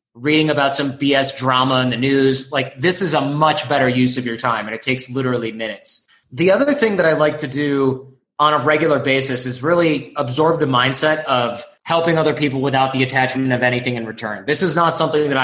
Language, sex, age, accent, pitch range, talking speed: English, male, 20-39, American, 130-165 Hz, 220 wpm